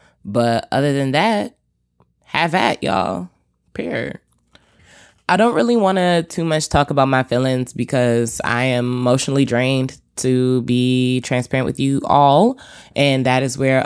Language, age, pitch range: English, 20-39, 110-130 Hz